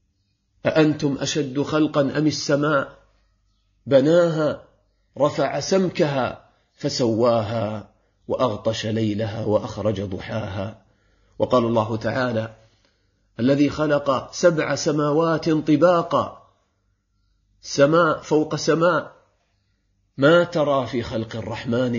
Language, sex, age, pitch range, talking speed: Arabic, male, 40-59, 100-155 Hz, 80 wpm